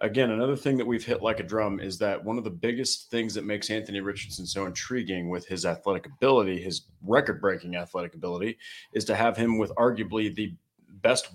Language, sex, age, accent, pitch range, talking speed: English, male, 30-49, American, 105-130 Hz, 200 wpm